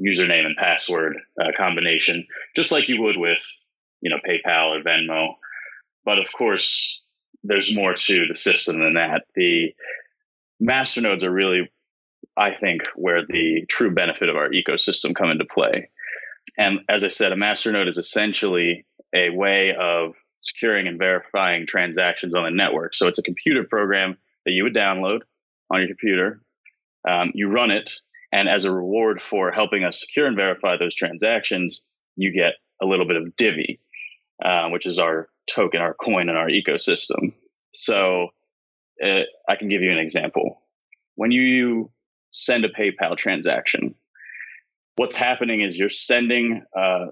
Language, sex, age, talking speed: English, male, 20-39, 160 wpm